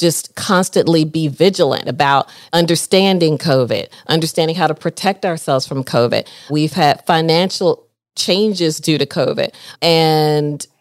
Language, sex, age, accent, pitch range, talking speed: English, female, 40-59, American, 145-175 Hz, 120 wpm